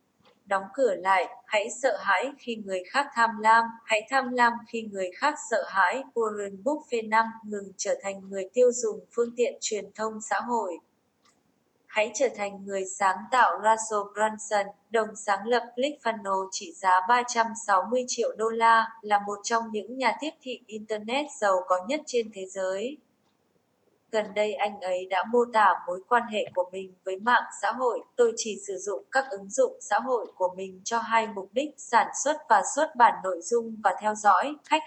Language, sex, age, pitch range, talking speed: Vietnamese, female, 20-39, 195-245 Hz, 185 wpm